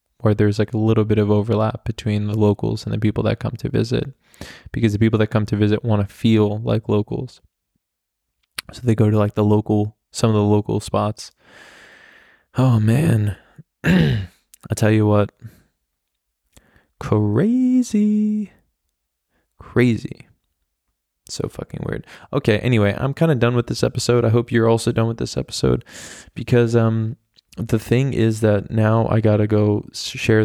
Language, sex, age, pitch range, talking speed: English, male, 20-39, 105-120 Hz, 160 wpm